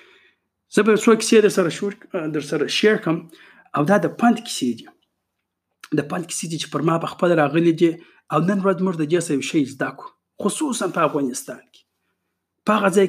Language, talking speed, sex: Urdu, 180 wpm, male